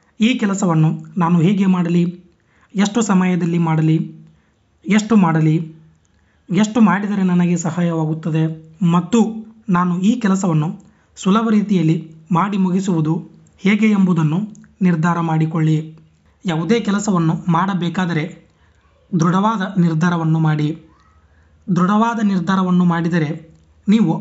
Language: Kannada